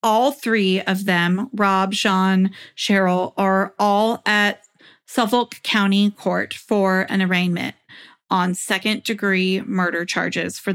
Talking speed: 115 wpm